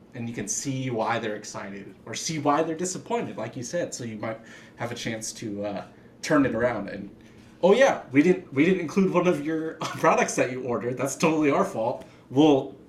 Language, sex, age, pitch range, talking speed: English, male, 20-39, 105-135 Hz, 215 wpm